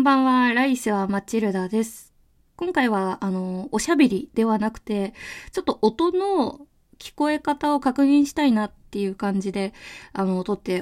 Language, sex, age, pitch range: Japanese, female, 20-39, 190-275 Hz